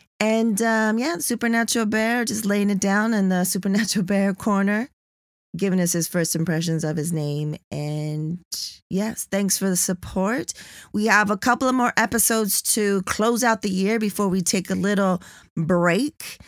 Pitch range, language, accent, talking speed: 160-205 Hz, English, American, 170 wpm